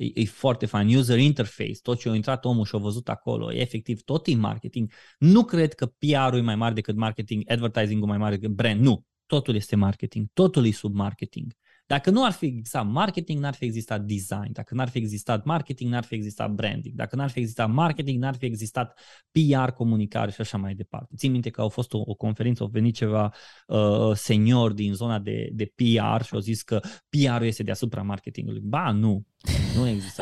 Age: 20-39